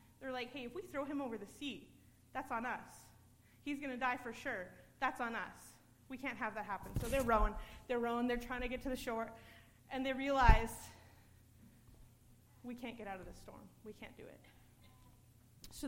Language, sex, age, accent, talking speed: English, female, 30-49, American, 205 wpm